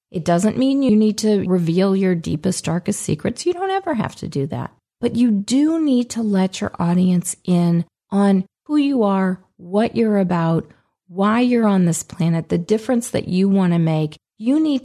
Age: 40-59